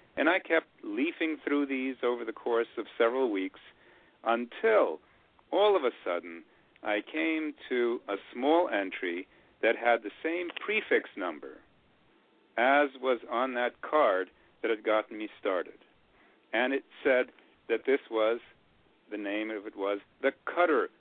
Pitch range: 110-140 Hz